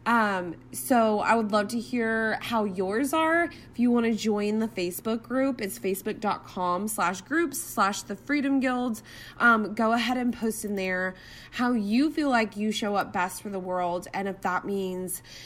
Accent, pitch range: American, 185-230 Hz